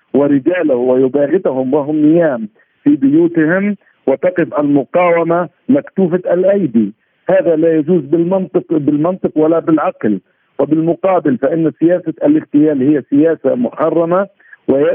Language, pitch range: Arabic, 145-180 Hz